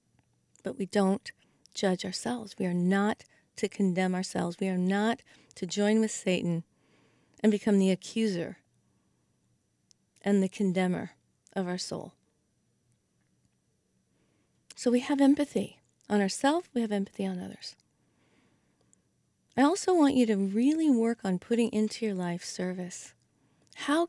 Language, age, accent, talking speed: English, 40-59, American, 130 wpm